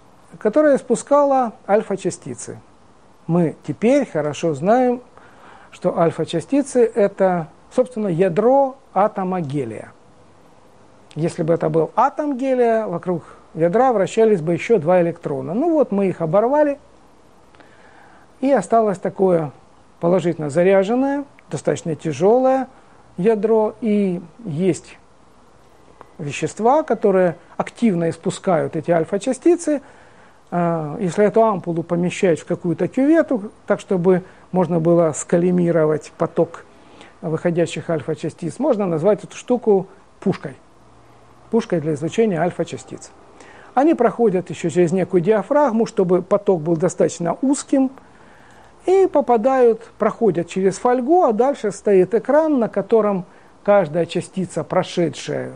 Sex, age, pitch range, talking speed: male, 50-69, 170-235 Hz, 105 wpm